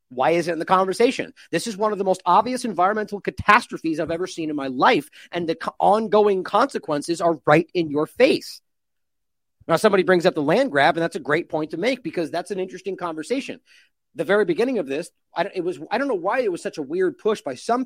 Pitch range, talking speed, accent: 160-215 Hz, 230 wpm, American